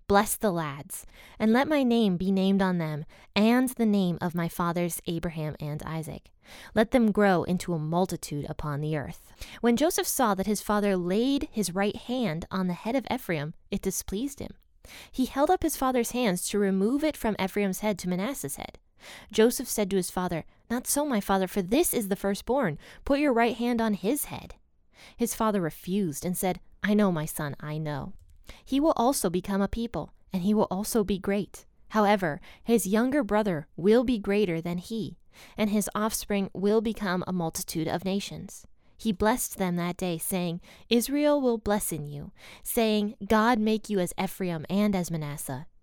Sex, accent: female, American